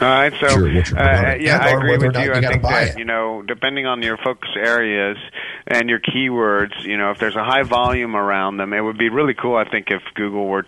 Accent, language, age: American, English, 40-59